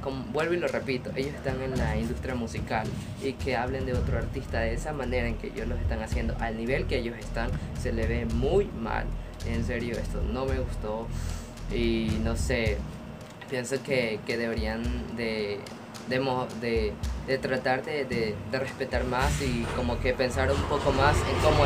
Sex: female